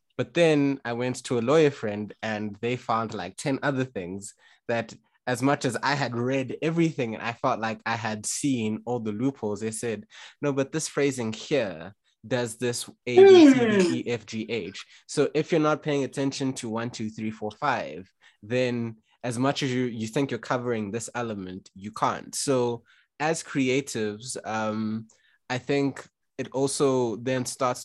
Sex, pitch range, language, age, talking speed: male, 110-130 Hz, English, 20-39, 185 wpm